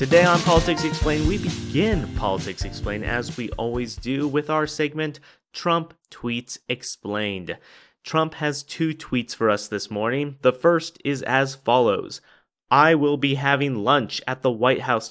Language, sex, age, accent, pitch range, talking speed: English, male, 30-49, American, 105-145 Hz, 160 wpm